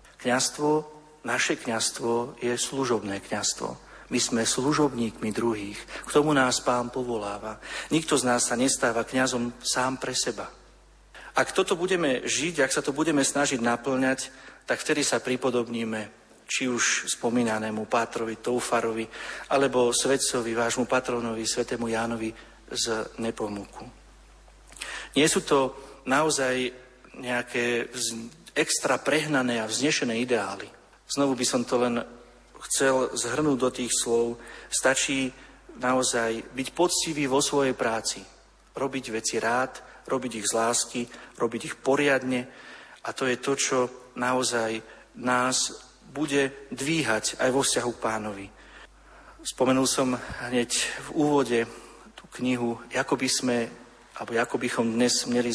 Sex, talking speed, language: male, 130 wpm, Slovak